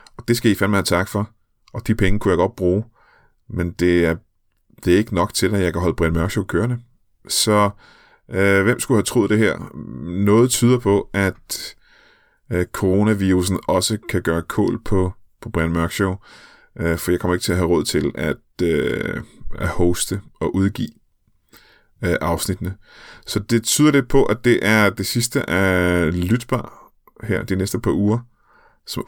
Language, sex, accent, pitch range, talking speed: Danish, male, native, 85-105 Hz, 180 wpm